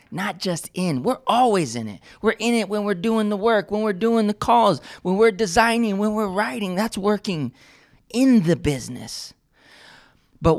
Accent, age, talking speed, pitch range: American, 20-39, 180 wpm, 160-215 Hz